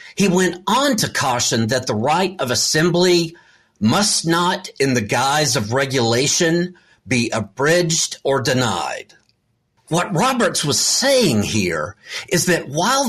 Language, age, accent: English, 50-69, American